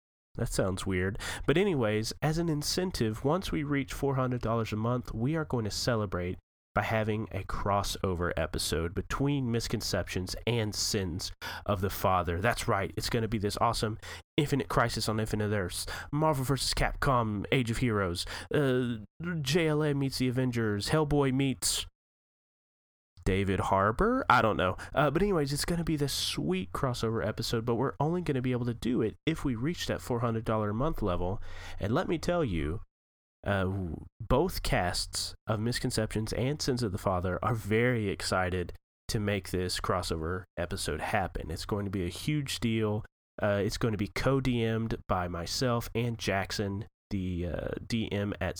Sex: male